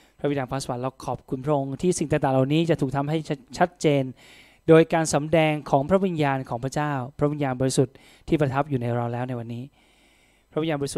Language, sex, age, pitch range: Thai, male, 20-39, 130-160 Hz